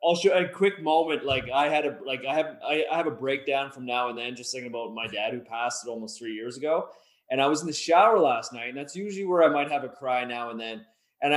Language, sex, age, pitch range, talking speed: English, male, 20-39, 125-155 Hz, 285 wpm